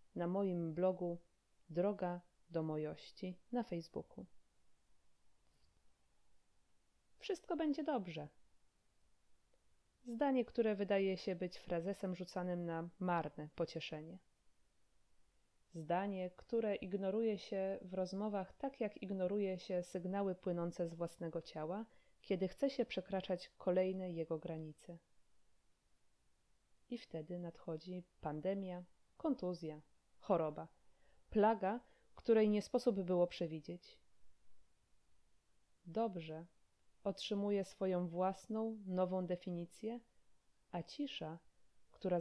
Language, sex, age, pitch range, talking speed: Polish, female, 20-39, 165-200 Hz, 90 wpm